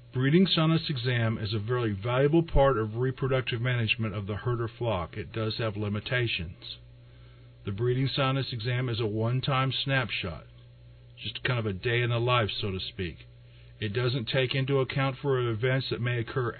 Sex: male